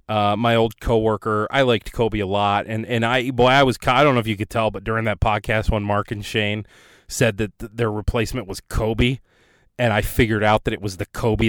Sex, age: male, 30-49